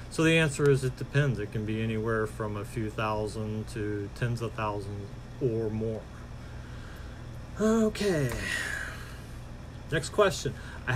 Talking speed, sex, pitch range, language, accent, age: 130 wpm, male, 115-145 Hz, English, American, 40-59